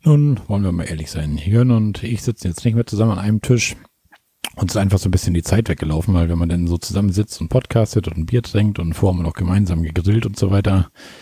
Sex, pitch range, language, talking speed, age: male, 90-110 Hz, German, 250 wpm, 40-59